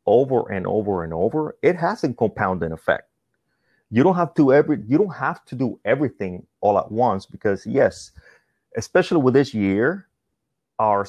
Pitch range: 100-140 Hz